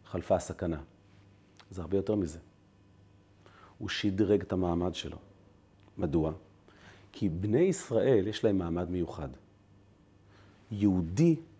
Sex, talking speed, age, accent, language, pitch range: male, 105 wpm, 40-59, native, Hebrew, 100-130 Hz